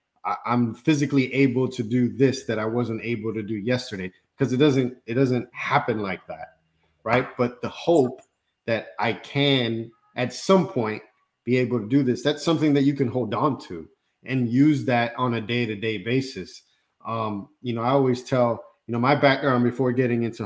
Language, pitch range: English, 115-135 Hz